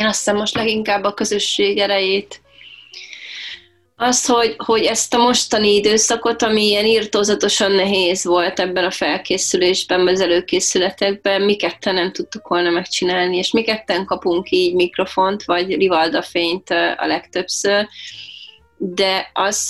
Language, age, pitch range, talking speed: Hungarian, 30-49, 180-215 Hz, 135 wpm